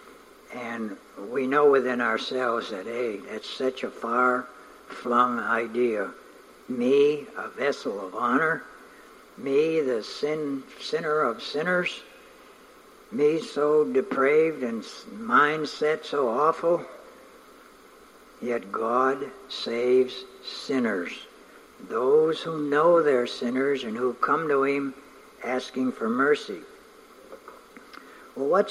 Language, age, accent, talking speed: English, 60-79, American, 100 wpm